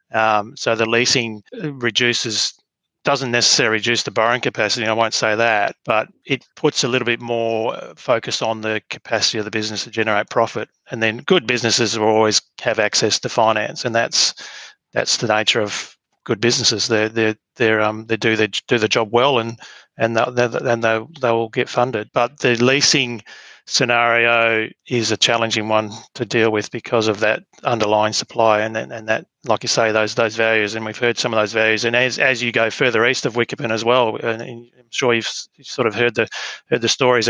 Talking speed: 200 wpm